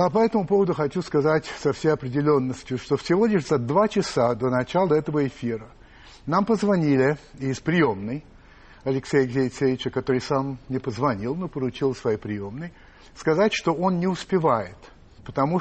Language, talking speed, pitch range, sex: Russian, 155 wpm, 125-160 Hz, male